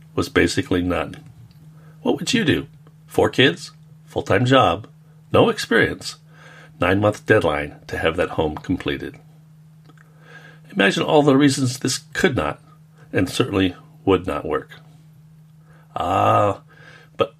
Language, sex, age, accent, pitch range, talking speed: English, male, 60-79, American, 135-155 Hz, 115 wpm